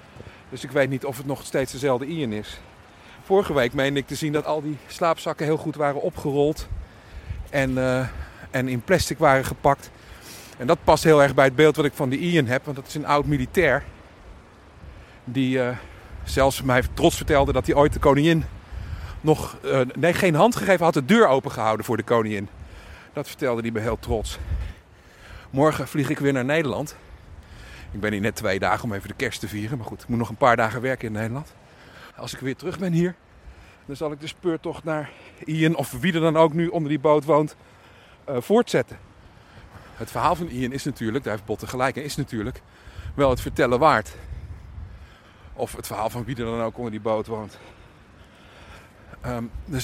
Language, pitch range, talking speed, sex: Dutch, 105-145 Hz, 200 wpm, male